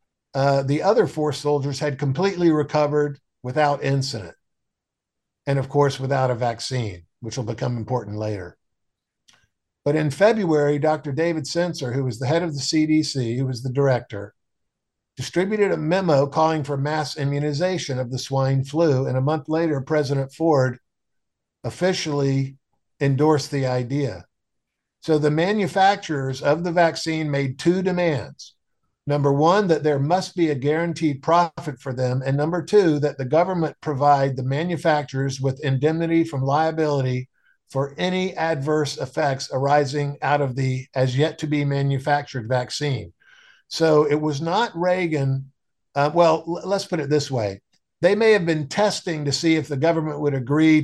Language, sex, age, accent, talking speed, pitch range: English, male, 50-69, American, 155 wpm, 135-160 Hz